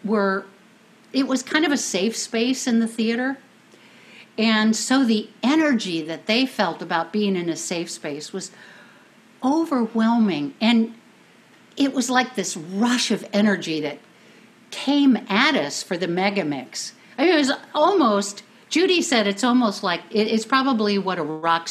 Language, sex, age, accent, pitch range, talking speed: English, female, 60-79, American, 180-240 Hz, 160 wpm